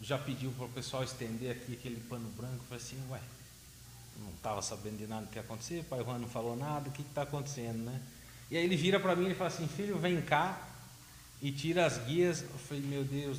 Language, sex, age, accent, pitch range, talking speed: Portuguese, male, 40-59, Brazilian, 120-170 Hz, 240 wpm